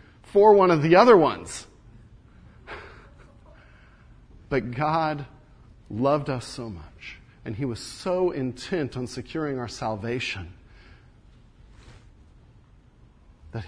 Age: 40-59